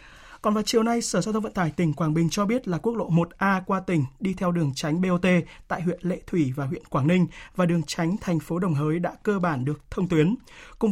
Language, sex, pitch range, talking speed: Vietnamese, male, 160-200 Hz, 260 wpm